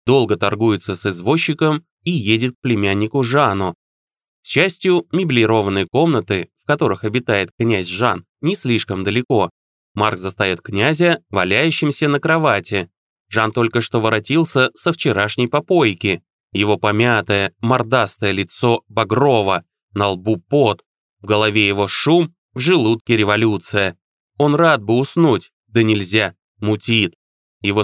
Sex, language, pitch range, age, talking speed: male, Russian, 100-125 Hz, 20-39, 120 wpm